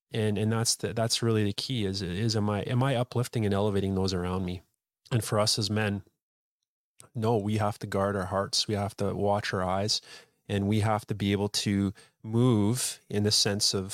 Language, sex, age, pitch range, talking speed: English, male, 20-39, 100-115 Hz, 215 wpm